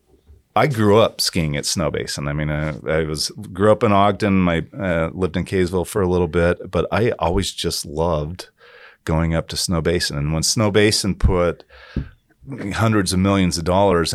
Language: English